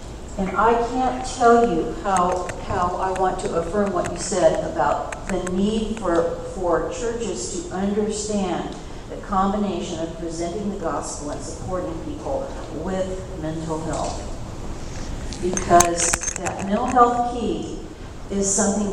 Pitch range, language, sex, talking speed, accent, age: 190-240 Hz, English, female, 130 wpm, American, 40-59